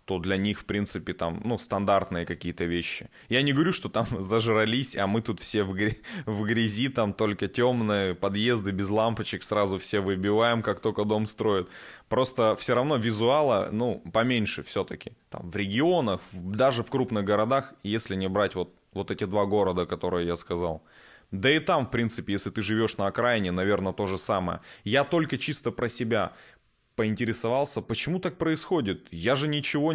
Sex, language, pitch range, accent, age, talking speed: male, Russian, 100-135 Hz, native, 20-39, 170 wpm